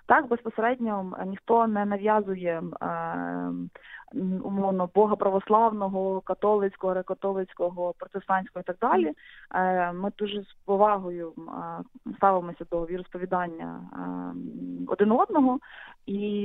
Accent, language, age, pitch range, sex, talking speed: native, Ukrainian, 20-39, 185-230 Hz, female, 95 wpm